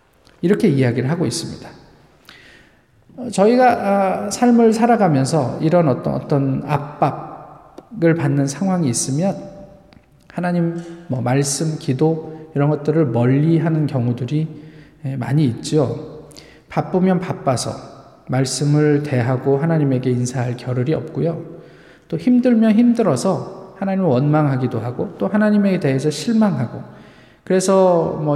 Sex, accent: male, native